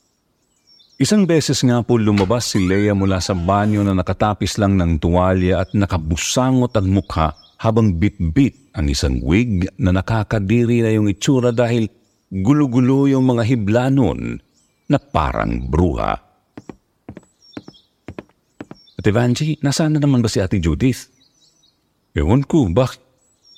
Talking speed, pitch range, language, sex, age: 120 wpm, 95-130 Hz, Filipino, male, 50-69